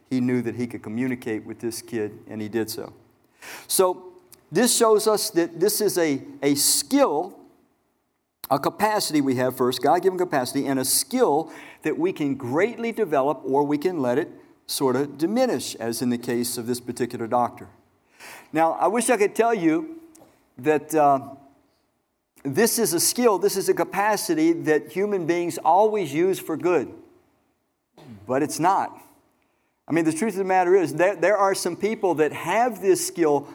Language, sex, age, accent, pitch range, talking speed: English, male, 50-69, American, 140-230 Hz, 175 wpm